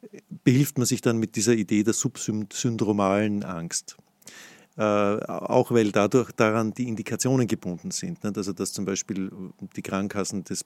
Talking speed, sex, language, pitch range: 145 wpm, male, German, 100-115 Hz